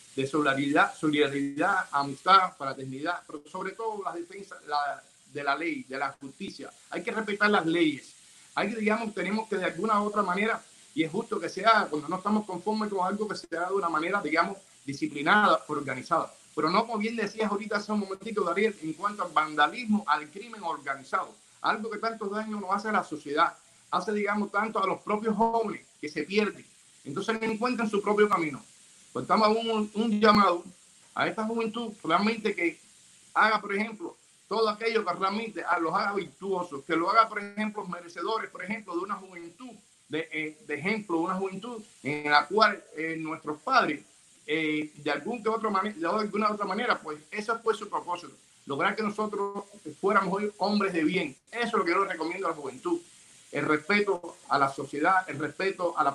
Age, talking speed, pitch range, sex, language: 50-69, 190 wpm, 160-215 Hz, male, English